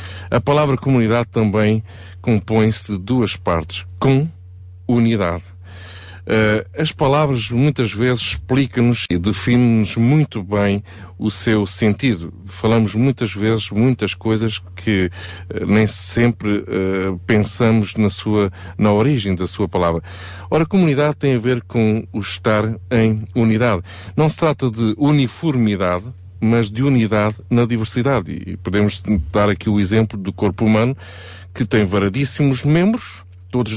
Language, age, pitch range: Portuguese, 50-69, 95-120 Hz